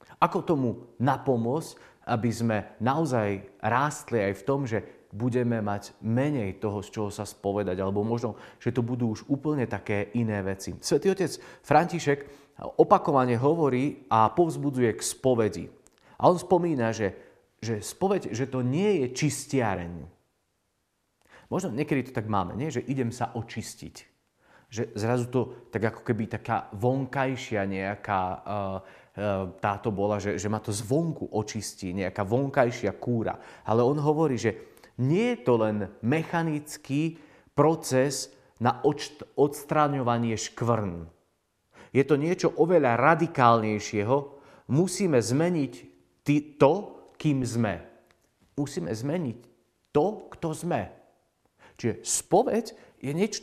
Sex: male